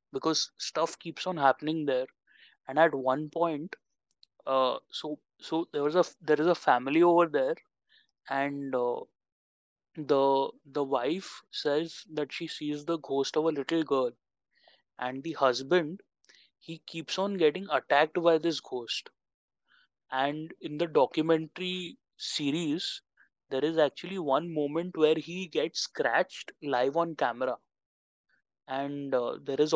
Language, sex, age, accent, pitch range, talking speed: Hindi, male, 20-39, native, 140-170 Hz, 140 wpm